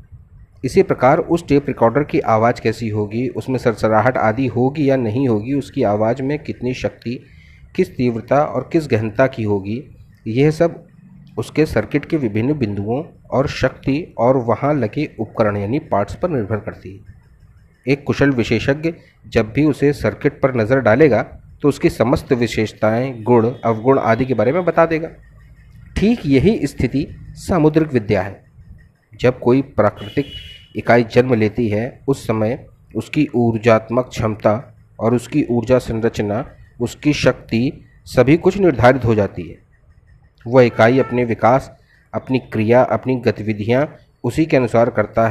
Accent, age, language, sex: native, 30-49, Hindi, male